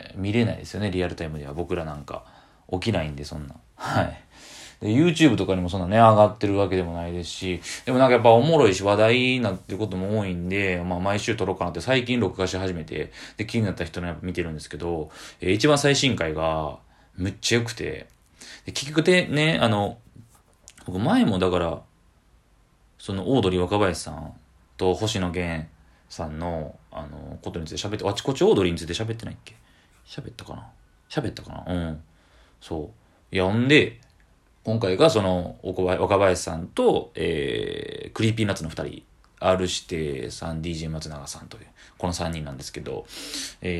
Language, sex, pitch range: Japanese, male, 85-110 Hz